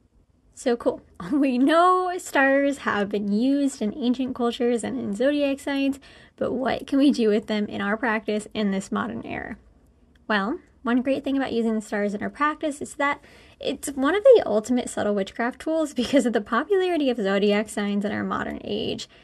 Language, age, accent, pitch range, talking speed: English, 10-29, American, 220-280 Hz, 190 wpm